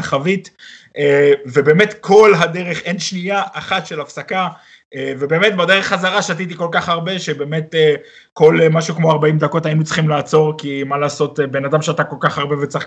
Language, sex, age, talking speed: Hebrew, male, 30-49, 165 wpm